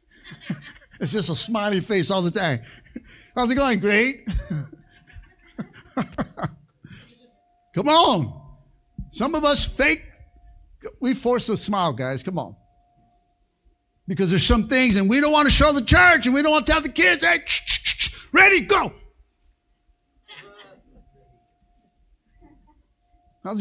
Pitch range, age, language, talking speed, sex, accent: 140-235 Hz, 60-79, English, 125 wpm, male, American